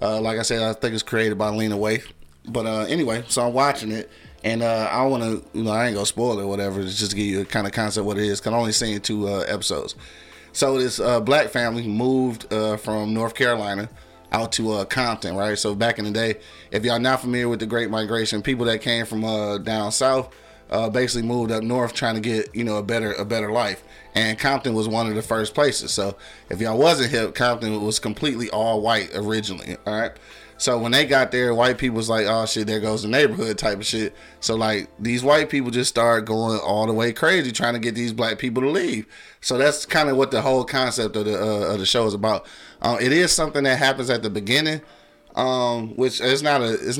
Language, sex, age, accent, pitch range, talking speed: English, male, 30-49, American, 105-125 Hz, 250 wpm